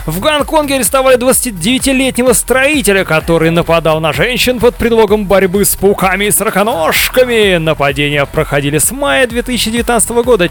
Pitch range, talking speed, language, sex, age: 165-245 Hz, 125 wpm, Russian, male, 20-39